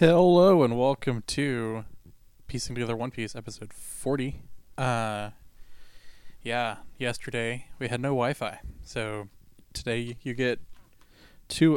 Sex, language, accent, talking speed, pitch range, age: male, English, American, 110 wpm, 105-125 Hz, 20-39